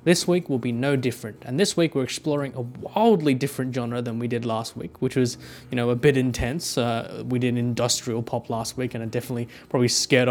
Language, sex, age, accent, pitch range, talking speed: English, male, 20-39, Australian, 120-140 Hz, 225 wpm